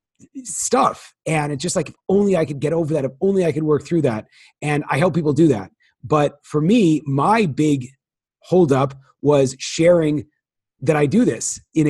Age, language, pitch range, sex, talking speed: 30-49, English, 130-160 Hz, male, 190 wpm